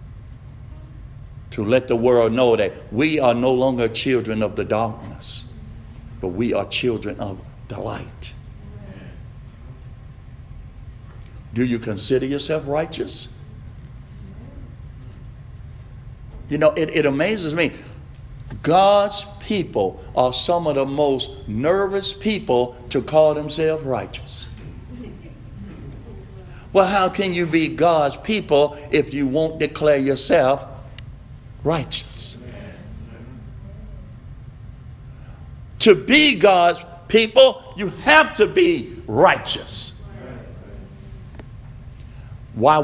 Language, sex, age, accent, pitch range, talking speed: English, male, 60-79, American, 120-190 Hz, 95 wpm